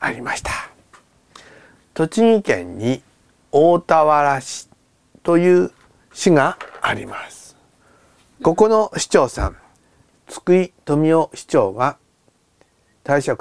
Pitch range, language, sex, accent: 130-180 Hz, Japanese, male, native